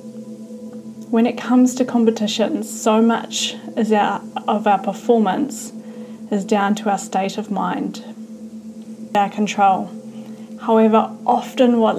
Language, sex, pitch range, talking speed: English, female, 220-235 Hz, 110 wpm